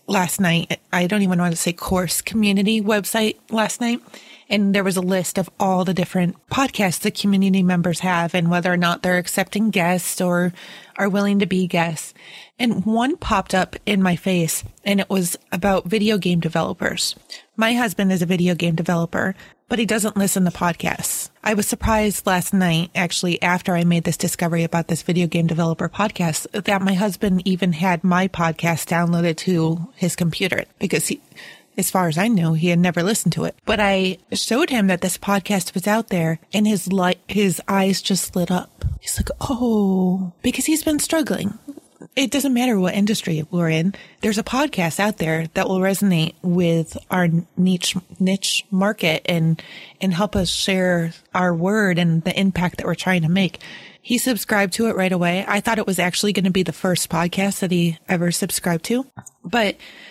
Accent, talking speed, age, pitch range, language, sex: American, 190 wpm, 30-49, 175-210 Hz, English, female